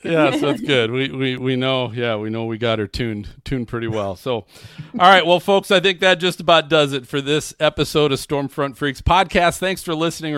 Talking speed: 230 wpm